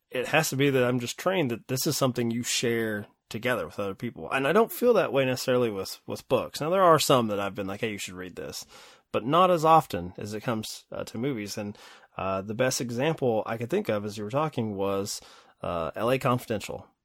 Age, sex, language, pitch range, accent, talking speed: 30-49, male, English, 110-140 Hz, American, 240 wpm